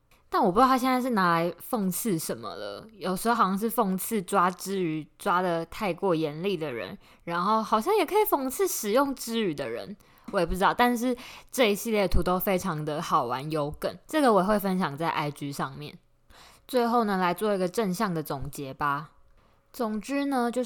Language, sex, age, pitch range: Chinese, female, 10-29, 170-235 Hz